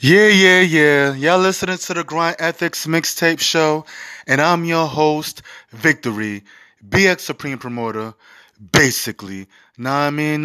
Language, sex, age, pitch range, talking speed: English, male, 20-39, 120-150 Hz, 130 wpm